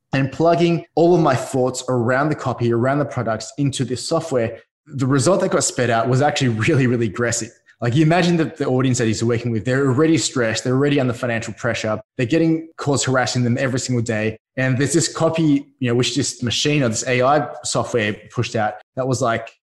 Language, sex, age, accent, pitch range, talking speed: English, male, 20-39, Australian, 120-145 Hz, 215 wpm